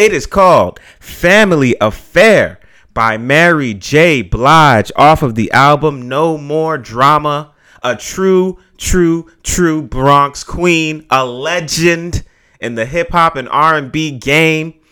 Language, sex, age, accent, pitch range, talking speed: English, male, 30-49, American, 135-175 Hz, 120 wpm